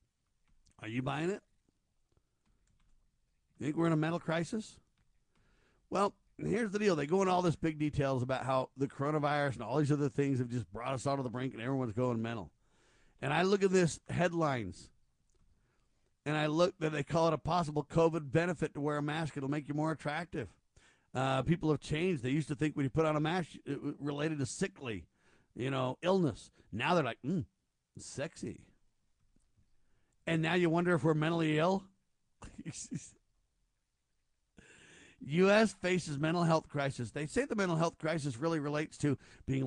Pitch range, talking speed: 135-165 Hz, 180 wpm